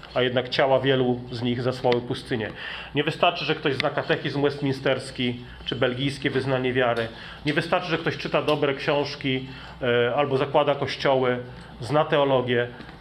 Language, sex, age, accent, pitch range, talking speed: Polish, male, 40-59, native, 130-160 Hz, 145 wpm